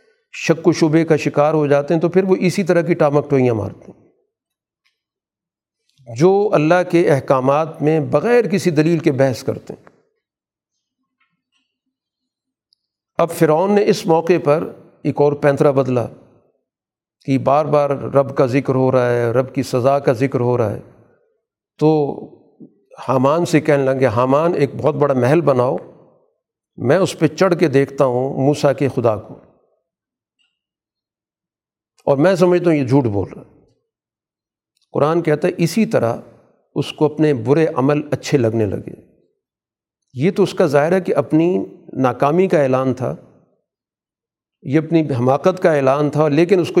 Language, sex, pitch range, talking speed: Urdu, male, 135-170 Hz, 155 wpm